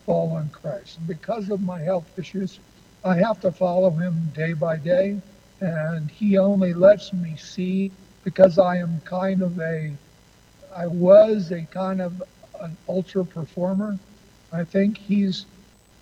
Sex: male